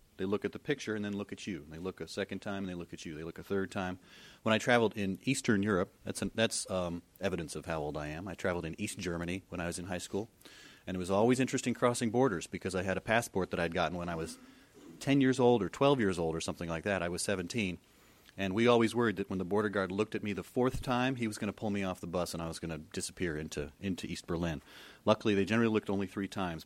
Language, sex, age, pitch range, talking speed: English, male, 30-49, 90-115 Hz, 280 wpm